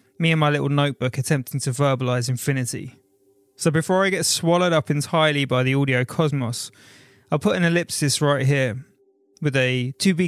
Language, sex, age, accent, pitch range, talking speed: English, male, 20-39, British, 130-160 Hz, 175 wpm